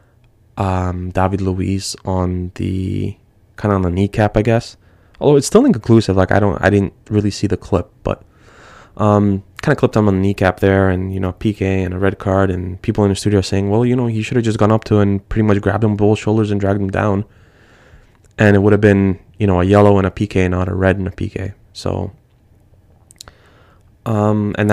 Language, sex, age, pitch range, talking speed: English, male, 20-39, 95-110 Hz, 225 wpm